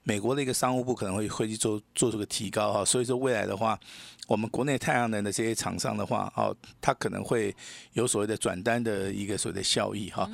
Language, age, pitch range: Chinese, 50-69, 105-135 Hz